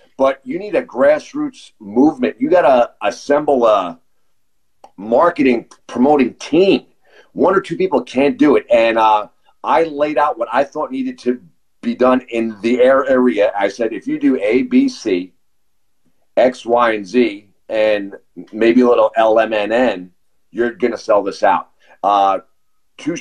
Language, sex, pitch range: English, male, 120-155 Hz